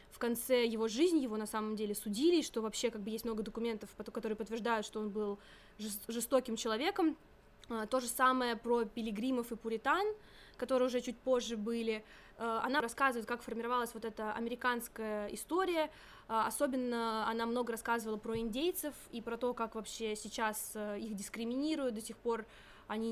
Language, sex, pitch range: Russian, female, 220-250 Hz